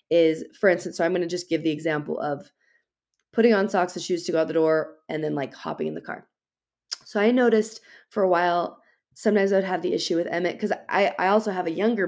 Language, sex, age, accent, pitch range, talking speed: English, female, 20-39, American, 165-210 Hz, 240 wpm